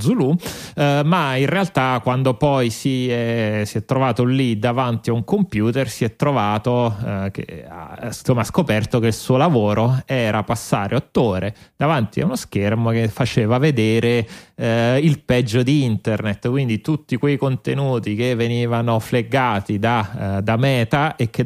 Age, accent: 30-49, native